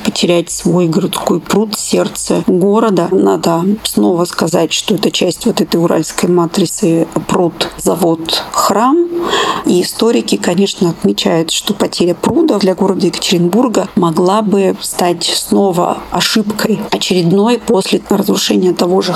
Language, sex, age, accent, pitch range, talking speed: Russian, female, 40-59, native, 175-205 Hz, 120 wpm